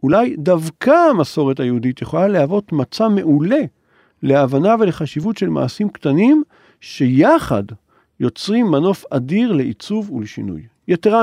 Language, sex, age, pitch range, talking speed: Hebrew, male, 50-69, 130-200 Hz, 105 wpm